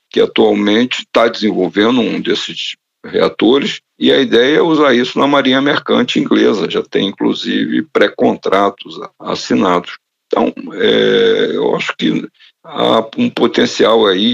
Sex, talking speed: male, 130 wpm